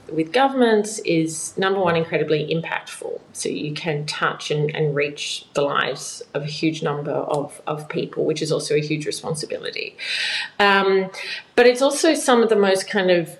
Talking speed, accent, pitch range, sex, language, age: 175 wpm, Australian, 155-205 Hz, female, English, 30-49